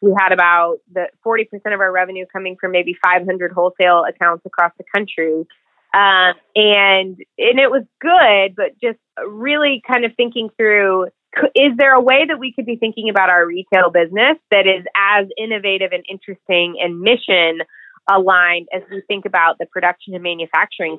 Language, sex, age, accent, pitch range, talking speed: English, female, 20-39, American, 180-225 Hz, 170 wpm